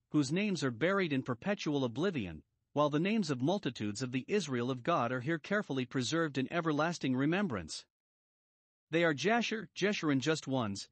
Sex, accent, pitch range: male, American, 125-175 Hz